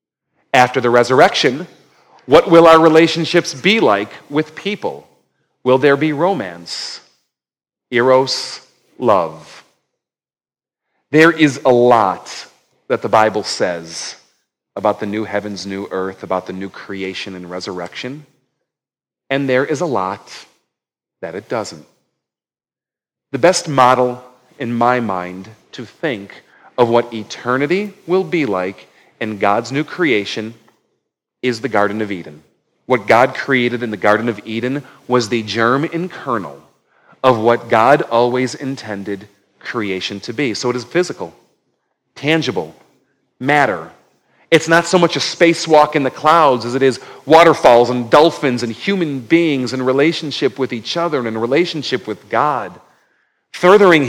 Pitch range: 110-150 Hz